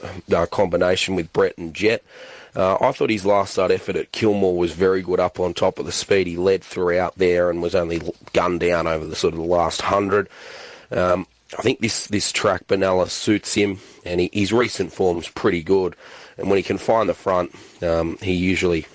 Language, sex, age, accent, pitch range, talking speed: English, male, 30-49, Australian, 90-105 Hz, 210 wpm